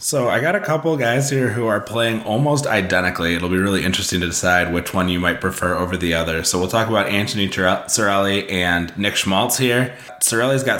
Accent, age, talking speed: American, 20-39, 215 wpm